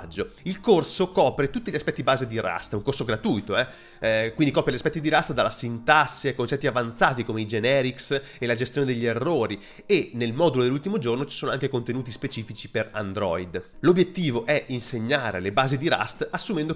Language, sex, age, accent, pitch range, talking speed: Italian, male, 30-49, native, 115-155 Hz, 195 wpm